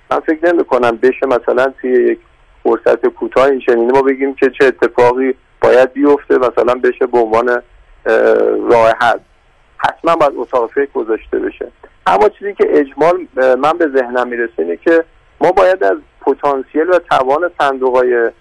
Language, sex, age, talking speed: Persian, male, 50-69, 145 wpm